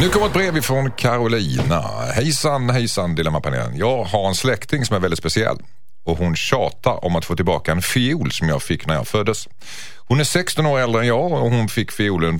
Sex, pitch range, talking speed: male, 85-130 Hz, 210 wpm